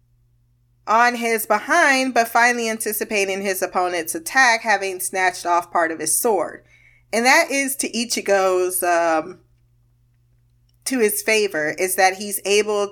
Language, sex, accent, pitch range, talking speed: English, female, American, 170-230 Hz, 135 wpm